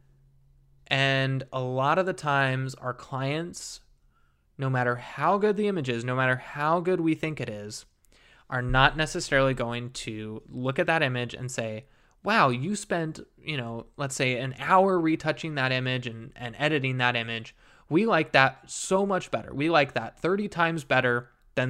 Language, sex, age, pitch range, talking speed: English, male, 20-39, 125-155 Hz, 175 wpm